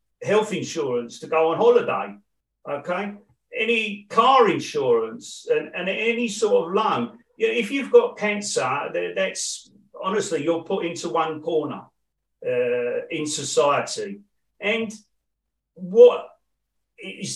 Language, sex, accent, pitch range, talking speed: English, male, British, 165-245 Hz, 115 wpm